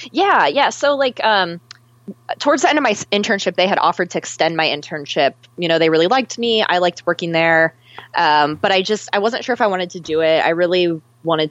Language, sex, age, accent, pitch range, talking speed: English, female, 20-39, American, 150-190 Hz, 230 wpm